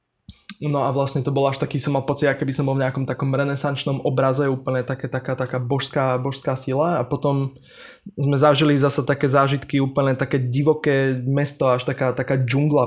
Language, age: Slovak, 20-39